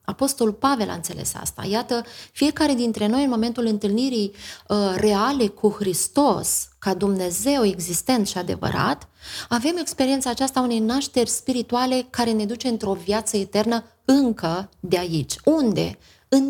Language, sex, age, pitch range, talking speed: Romanian, female, 20-39, 195-245 Hz, 140 wpm